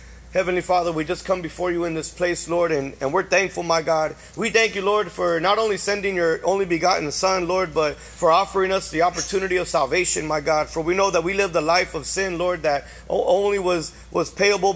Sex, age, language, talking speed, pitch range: male, 30-49, English, 230 wpm, 160-190 Hz